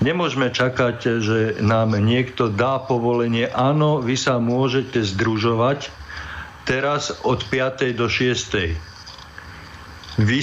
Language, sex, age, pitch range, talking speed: Slovak, male, 50-69, 110-130 Hz, 105 wpm